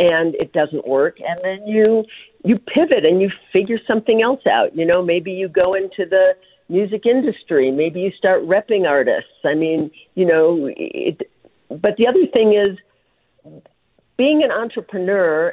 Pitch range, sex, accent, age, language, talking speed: 155-200 Hz, female, American, 50-69, English, 160 wpm